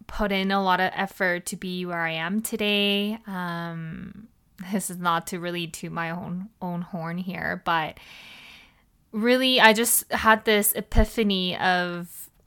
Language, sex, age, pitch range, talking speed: English, female, 20-39, 180-205 Hz, 155 wpm